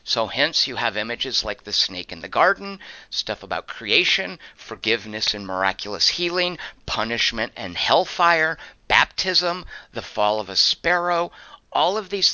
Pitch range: 105-140 Hz